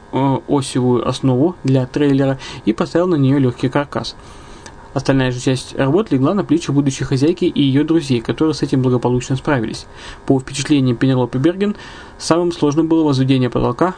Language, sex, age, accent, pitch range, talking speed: Russian, male, 20-39, native, 125-150 Hz, 155 wpm